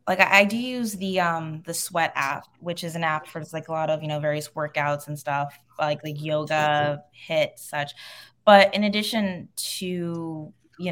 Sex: female